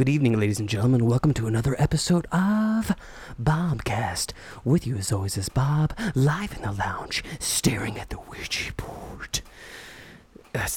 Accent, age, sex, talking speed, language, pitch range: American, 30-49, male, 150 wpm, English, 105-130 Hz